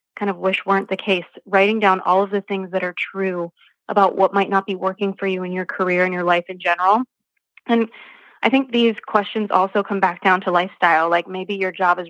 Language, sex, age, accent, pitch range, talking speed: English, female, 20-39, American, 180-200 Hz, 235 wpm